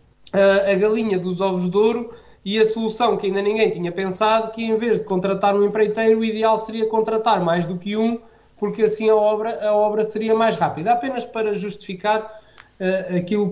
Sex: male